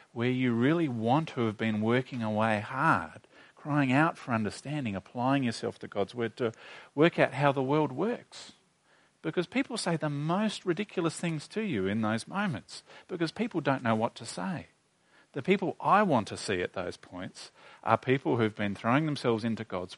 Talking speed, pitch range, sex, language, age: 185 wpm, 110-160 Hz, male, English, 40-59